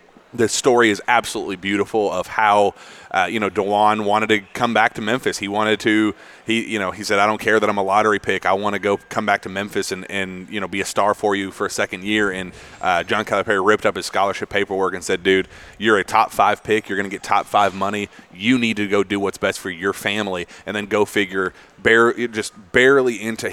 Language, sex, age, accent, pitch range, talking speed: English, male, 30-49, American, 95-115 Hz, 250 wpm